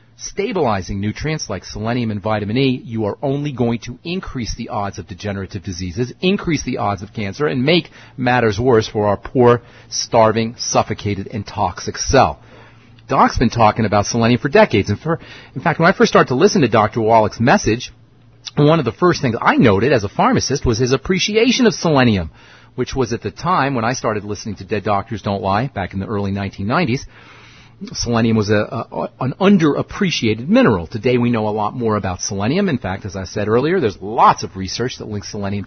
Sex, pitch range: male, 105-130 Hz